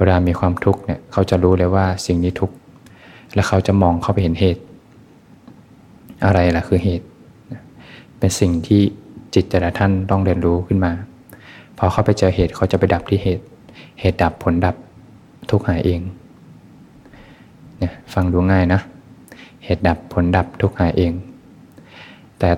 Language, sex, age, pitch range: Thai, male, 20-39, 90-95 Hz